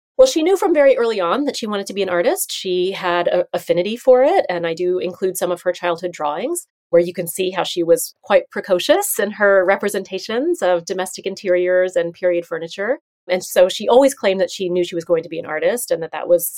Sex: female